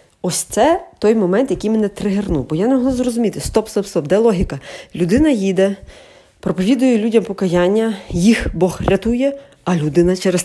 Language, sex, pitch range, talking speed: Ukrainian, female, 175-235 Hz, 160 wpm